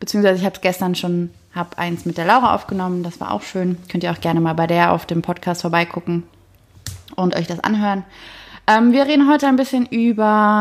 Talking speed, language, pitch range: 215 wpm, German, 175-215 Hz